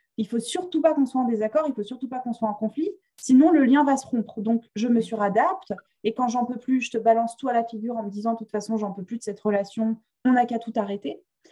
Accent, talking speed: French, 295 wpm